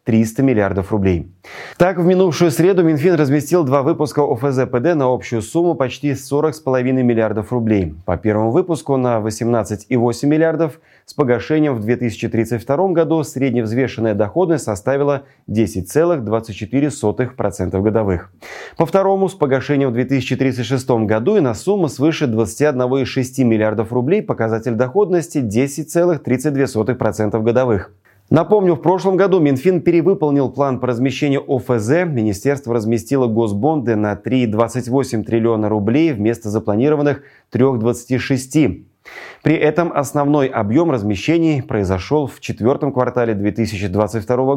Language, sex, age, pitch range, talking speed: Russian, male, 30-49, 110-150 Hz, 110 wpm